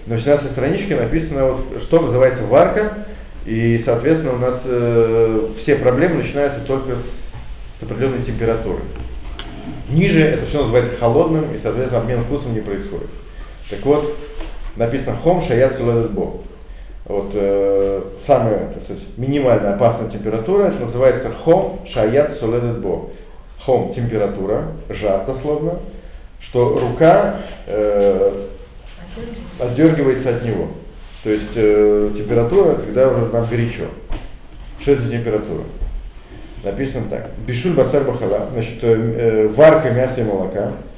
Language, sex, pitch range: Russian, male, 110-145 Hz